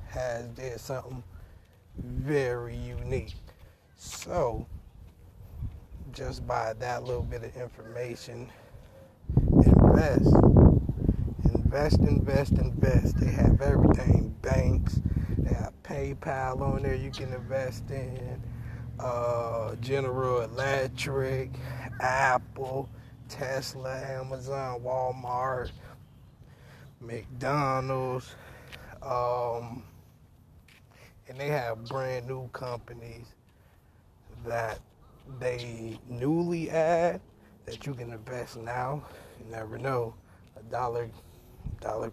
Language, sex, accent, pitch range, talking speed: English, male, American, 115-130 Hz, 85 wpm